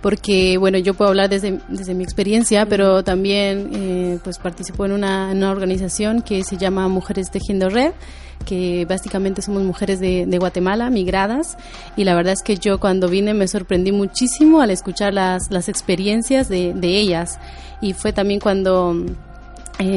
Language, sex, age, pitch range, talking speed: Spanish, female, 30-49, 180-205 Hz, 170 wpm